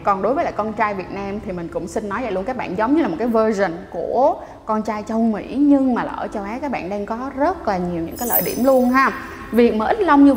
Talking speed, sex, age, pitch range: 295 wpm, female, 20-39, 190-265 Hz